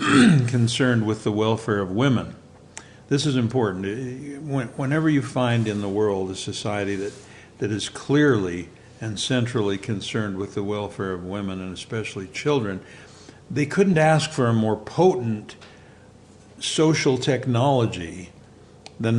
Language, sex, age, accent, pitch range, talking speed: English, male, 60-79, American, 100-130 Hz, 130 wpm